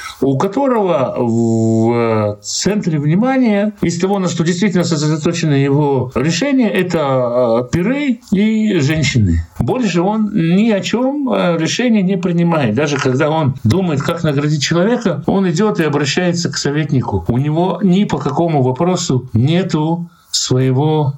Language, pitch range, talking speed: Russian, 130-180 Hz, 130 wpm